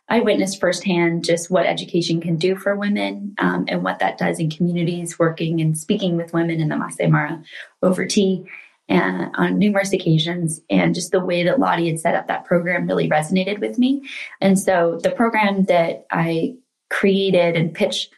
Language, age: English, 20-39